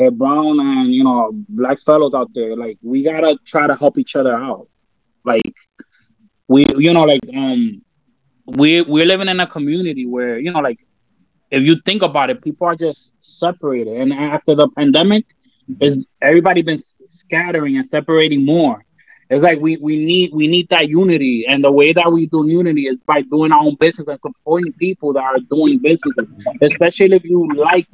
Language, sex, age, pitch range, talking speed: English, male, 20-39, 145-185 Hz, 185 wpm